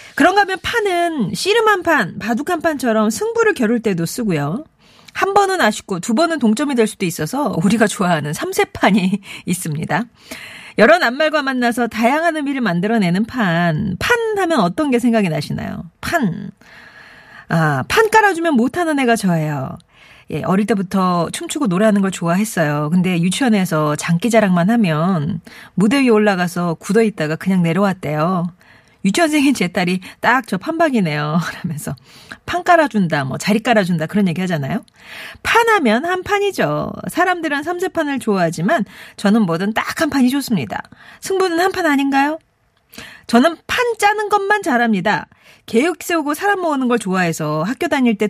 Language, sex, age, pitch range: Korean, female, 40-59, 185-310 Hz